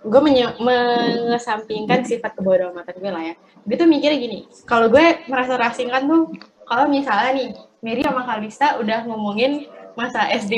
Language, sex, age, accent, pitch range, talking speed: Indonesian, female, 20-39, native, 190-255 Hz, 165 wpm